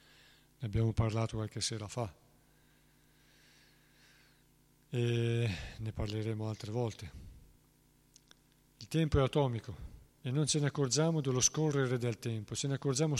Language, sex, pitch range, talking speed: Italian, male, 110-135 Hz, 125 wpm